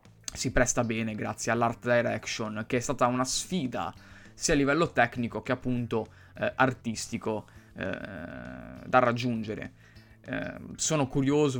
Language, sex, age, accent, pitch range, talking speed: Italian, male, 20-39, native, 110-125 Hz, 130 wpm